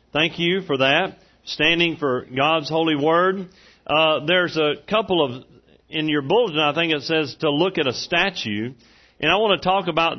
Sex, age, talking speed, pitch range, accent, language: male, 50-69, 190 wpm, 140-175 Hz, American, English